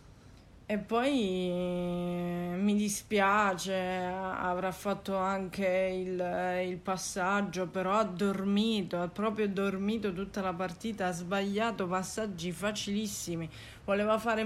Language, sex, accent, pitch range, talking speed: Italian, female, native, 180-210 Hz, 105 wpm